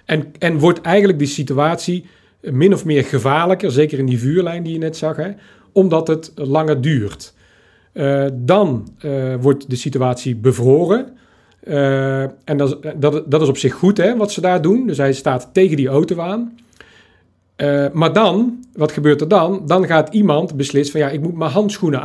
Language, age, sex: Dutch, 40-59, male